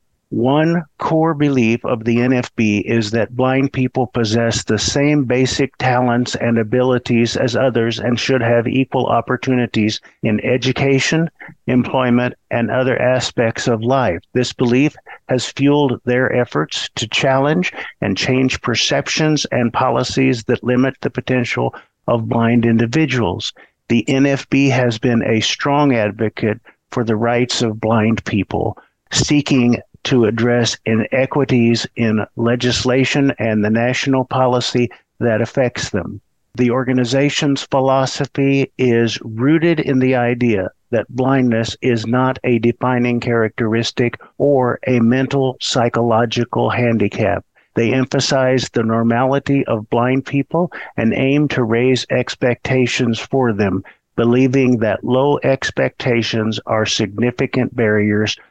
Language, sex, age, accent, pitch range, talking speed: English, male, 50-69, American, 115-135 Hz, 120 wpm